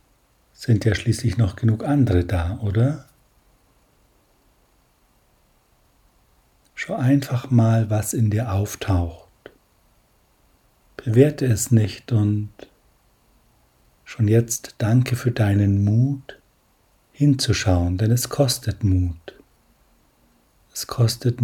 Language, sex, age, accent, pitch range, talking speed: German, male, 60-79, German, 100-125 Hz, 90 wpm